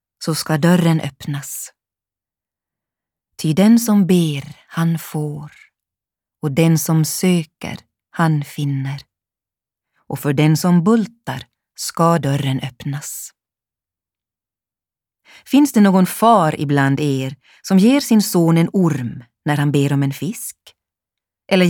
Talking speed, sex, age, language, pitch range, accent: 120 wpm, female, 30-49, Swedish, 140-175 Hz, native